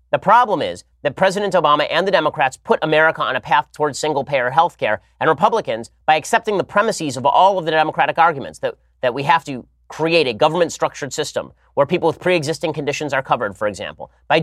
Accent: American